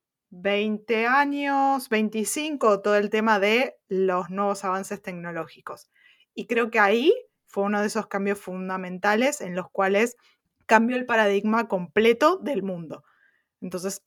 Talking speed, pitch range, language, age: 130 wpm, 190-220 Hz, Spanish, 20-39